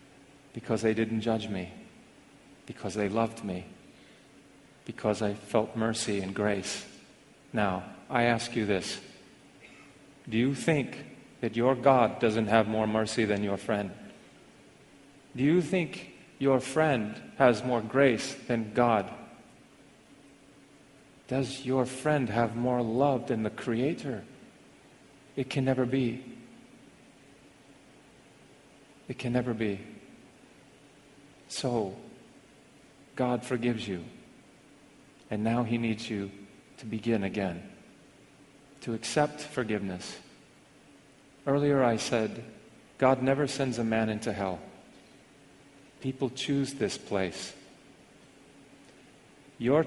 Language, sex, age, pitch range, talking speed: English, male, 40-59, 110-135 Hz, 110 wpm